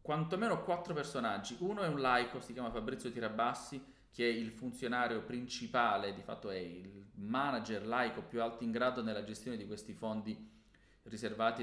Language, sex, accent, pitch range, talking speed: Italian, male, native, 110-135 Hz, 165 wpm